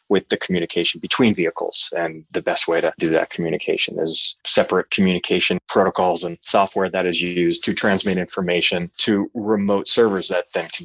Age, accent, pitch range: 30-49, American, 85-100 Hz